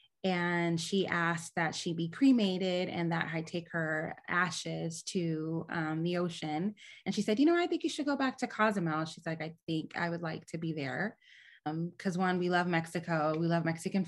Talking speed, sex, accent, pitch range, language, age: 210 wpm, female, American, 165-185 Hz, English, 20-39